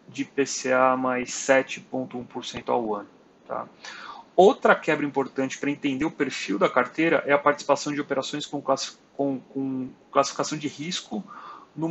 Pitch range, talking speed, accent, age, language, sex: 130-150 Hz, 130 wpm, Brazilian, 30-49, Portuguese, male